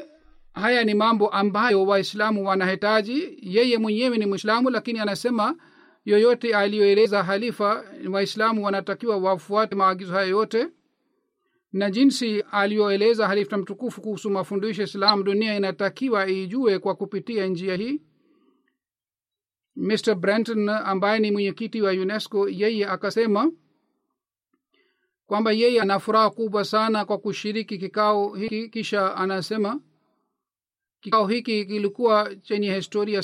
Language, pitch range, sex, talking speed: Swahili, 195-225 Hz, male, 110 wpm